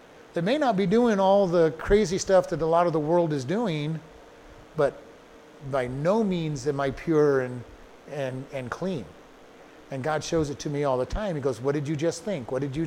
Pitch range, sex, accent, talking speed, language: 155-195 Hz, male, American, 220 wpm, English